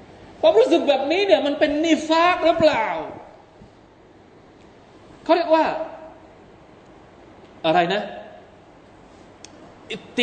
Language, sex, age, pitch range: Thai, male, 20-39, 200-305 Hz